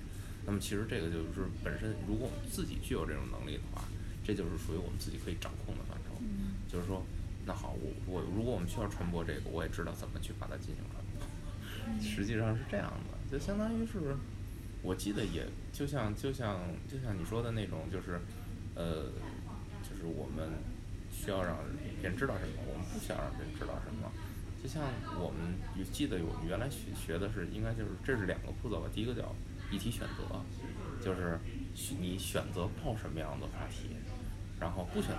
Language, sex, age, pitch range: Chinese, male, 20-39, 95-105 Hz